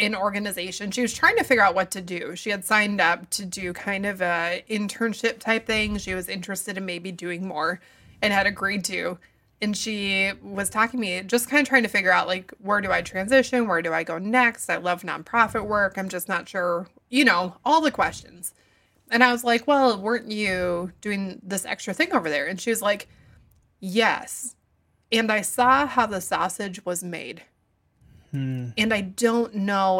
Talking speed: 200 wpm